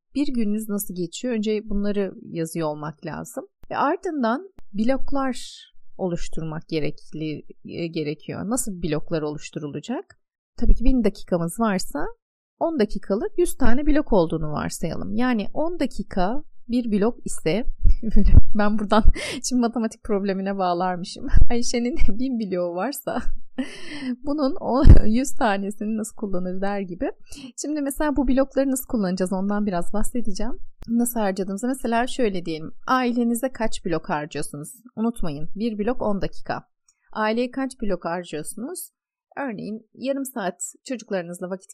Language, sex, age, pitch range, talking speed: Turkish, female, 30-49, 185-260 Hz, 125 wpm